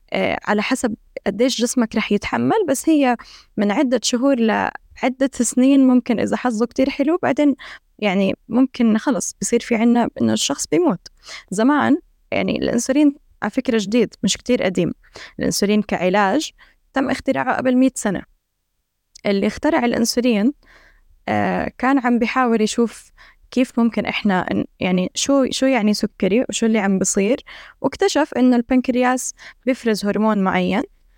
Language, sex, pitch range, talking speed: Arabic, female, 215-265 Hz, 135 wpm